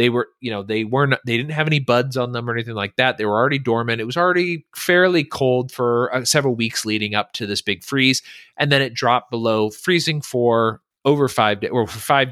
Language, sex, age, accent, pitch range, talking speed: English, male, 30-49, American, 115-145 Hz, 240 wpm